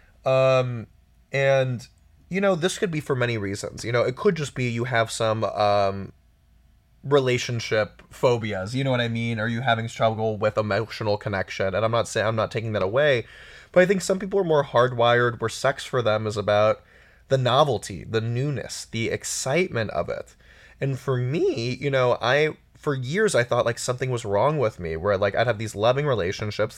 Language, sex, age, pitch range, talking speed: English, male, 20-39, 110-130 Hz, 195 wpm